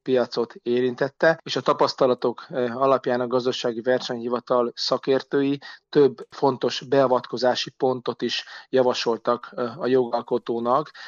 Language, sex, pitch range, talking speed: Hungarian, male, 120-130 Hz, 95 wpm